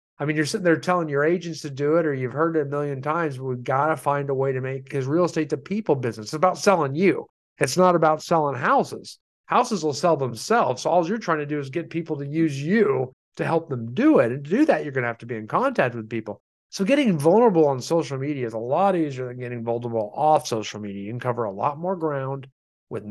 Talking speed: 260 wpm